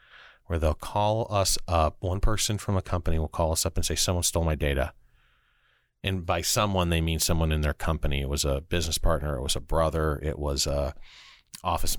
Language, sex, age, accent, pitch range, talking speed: English, male, 40-59, American, 75-90 Hz, 210 wpm